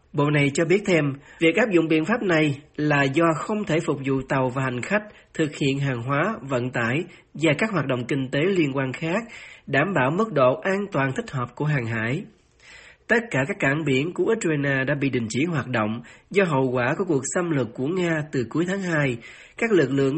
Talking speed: 225 wpm